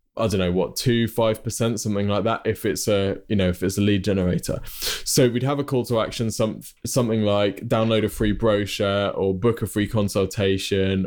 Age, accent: 20-39, British